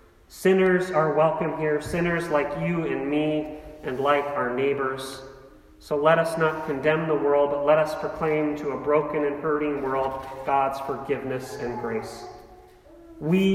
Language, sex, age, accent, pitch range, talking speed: English, male, 40-59, American, 140-180 Hz, 155 wpm